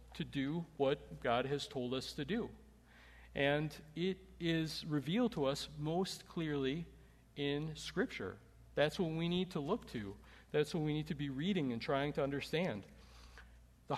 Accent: American